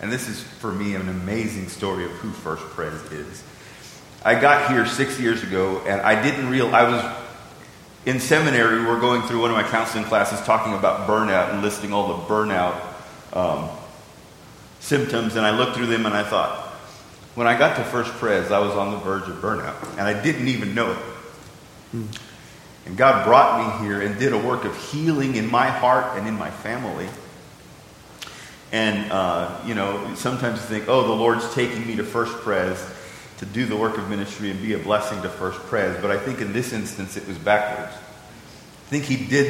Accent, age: American, 40-59